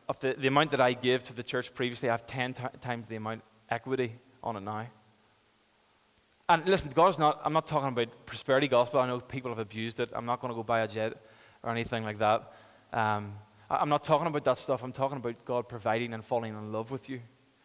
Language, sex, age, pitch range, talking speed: English, male, 20-39, 115-135 Hz, 235 wpm